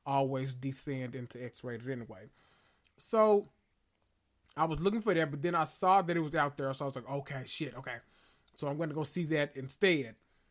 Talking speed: 195 wpm